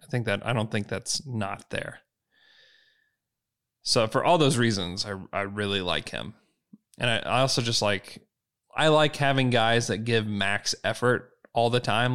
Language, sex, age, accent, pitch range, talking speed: English, male, 20-39, American, 110-140 Hz, 180 wpm